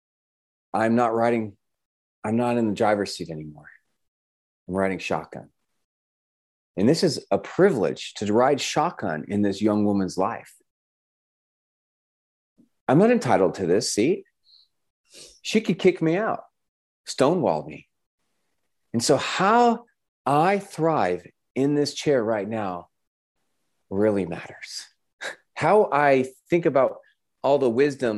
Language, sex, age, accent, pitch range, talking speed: English, male, 30-49, American, 105-145 Hz, 125 wpm